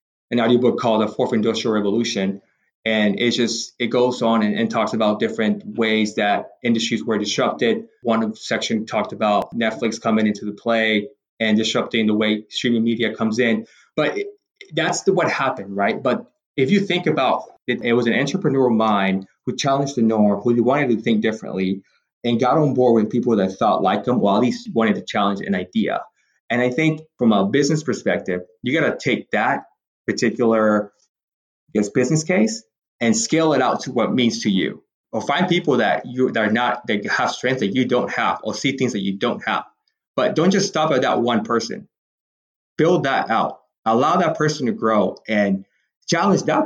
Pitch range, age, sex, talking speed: 110-135 Hz, 20-39, male, 195 wpm